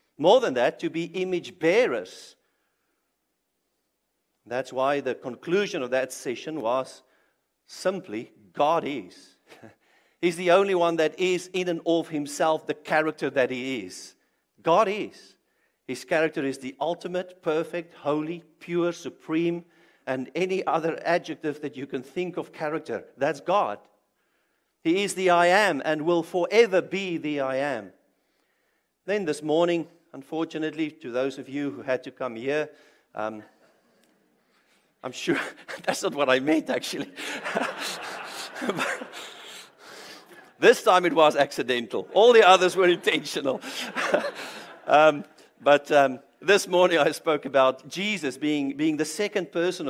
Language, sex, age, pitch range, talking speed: English, male, 50-69, 145-185 Hz, 135 wpm